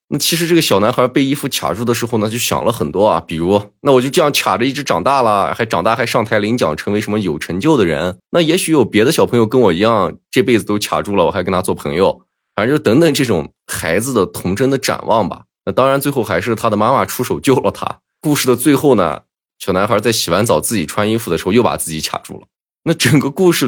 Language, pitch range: Chinese, 105-135 Hz